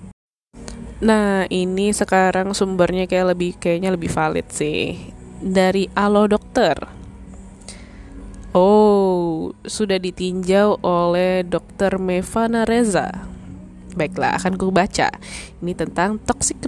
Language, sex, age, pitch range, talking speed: Indonesian, female, 10-29, 160-200 Hz, 95 wpm